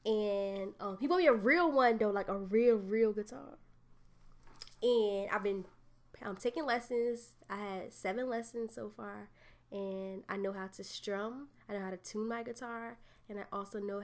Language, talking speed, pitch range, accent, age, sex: English, 185 wpm, 190-230 Hz, American, 10-29, female